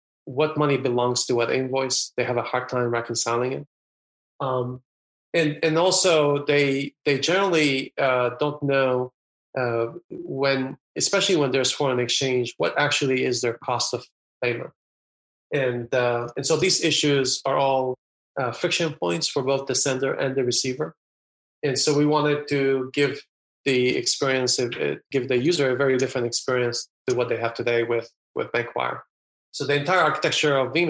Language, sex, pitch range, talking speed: English, male, 120-135 Hz, 165 wpm